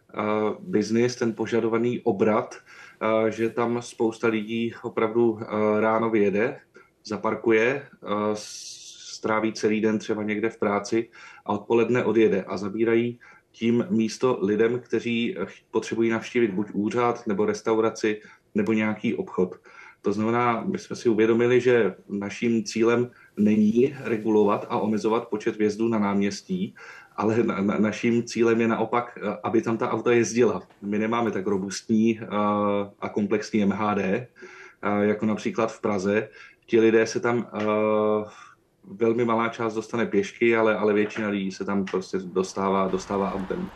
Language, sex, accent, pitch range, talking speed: Czech, male, native, 100-115 Hz, 130 wpm